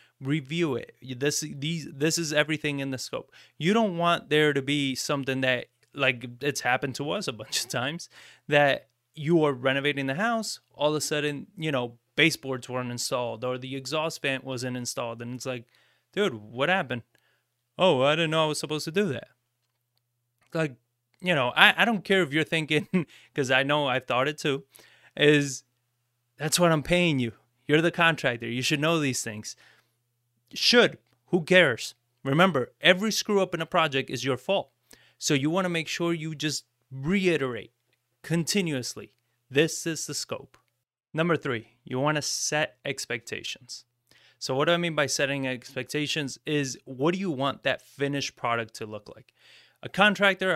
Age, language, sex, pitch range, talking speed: 20-39, English, male, 125-160 Hz, 180 wpm